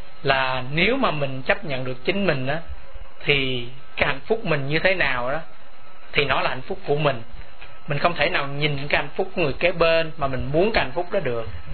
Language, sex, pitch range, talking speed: Vietnamese, male, 135-170 Hz, 235 wpm